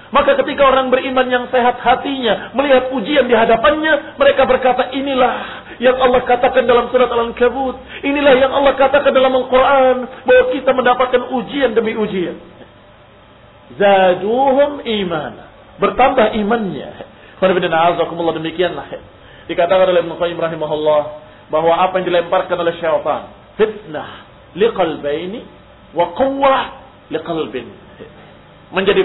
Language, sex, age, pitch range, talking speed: Indonesian, male, 50-69, 175-255 Hz, 115 wpm